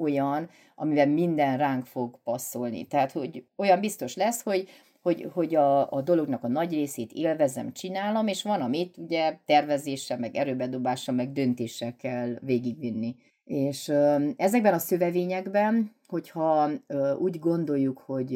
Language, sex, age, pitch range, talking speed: Hungarian, female, 30-49, 130-165 Hz, 135 wpm